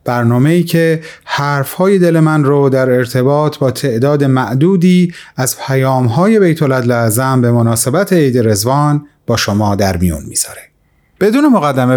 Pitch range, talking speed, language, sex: 125-175 Hz, 135 wpm, Persian, male